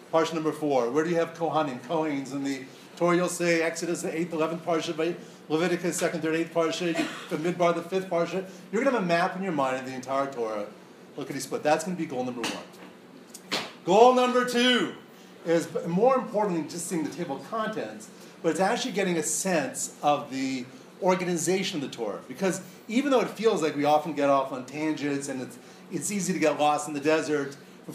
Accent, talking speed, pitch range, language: American, 220 wpm, 155-195 Hz, English